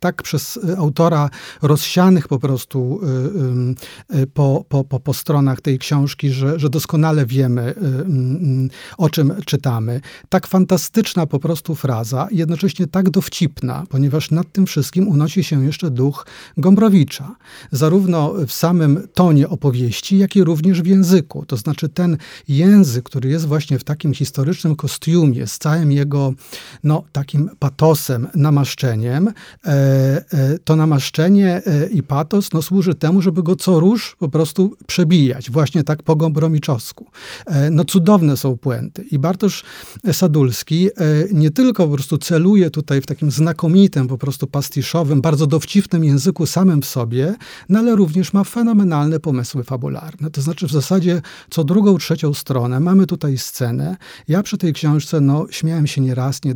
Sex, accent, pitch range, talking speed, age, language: male, native, 140-175 Hz, 140 wpm, 40-59, Polish